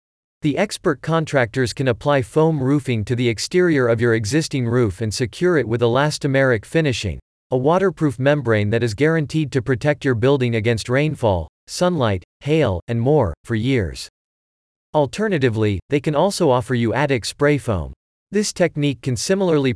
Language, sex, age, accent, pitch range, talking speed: English, male, 40-59, American, 110-150 Hz, 155 wpm